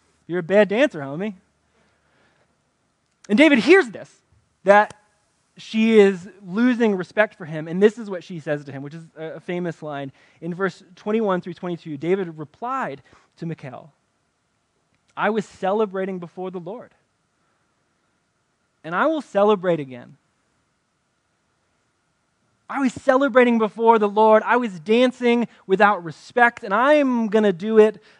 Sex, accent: male, American